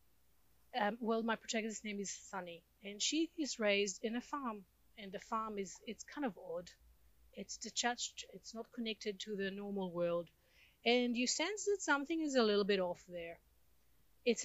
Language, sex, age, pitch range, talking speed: English, female, 30-49, 185-225 Hz, 180 wpm